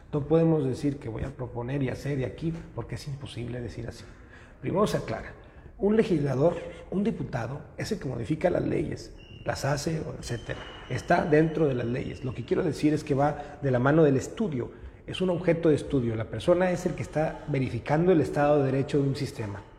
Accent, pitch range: Mexican, 120-155 Hz